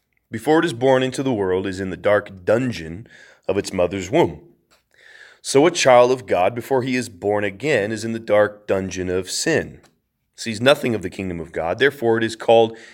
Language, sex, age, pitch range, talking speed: English, male, 30-49, 110-155 Hz, 205 wpm